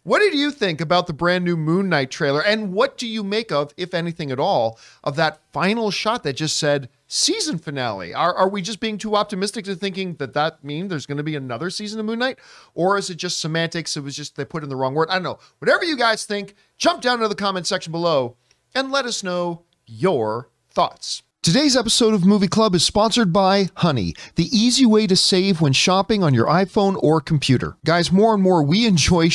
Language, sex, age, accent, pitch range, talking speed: English, male, 40-59, American, 150-210 Hz, 230 wpm